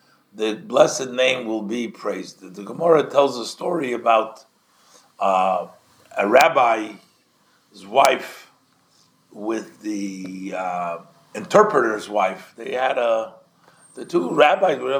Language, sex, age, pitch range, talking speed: English, male, 50-69, 125-180 Hz, 110 wpm